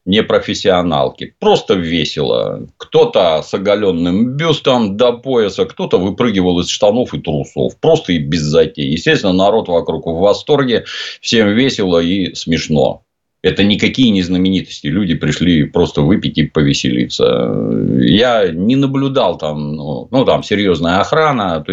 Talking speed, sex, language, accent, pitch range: 135 wpm, male, Russian, native, 75-120 Hz